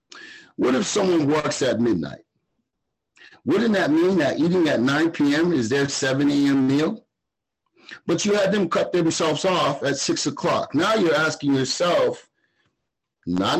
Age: 50-69